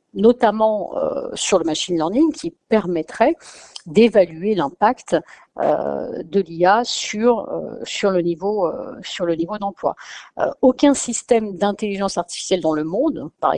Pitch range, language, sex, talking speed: 170-225 Hz, French, female, 110 wpm